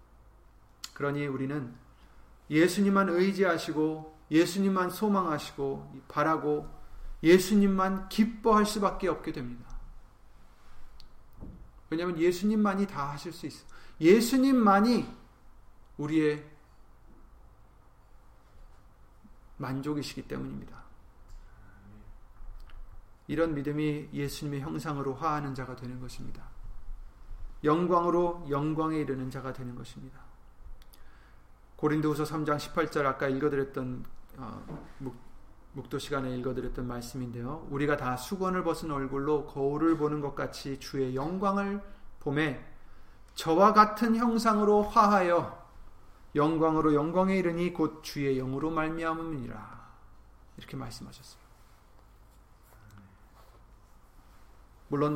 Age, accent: 40-59, native